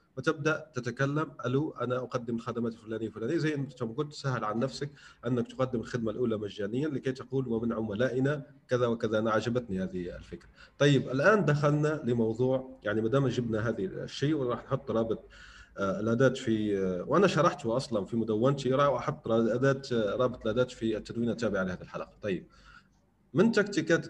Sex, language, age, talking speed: male, Arabic, 30-49, 155 wpm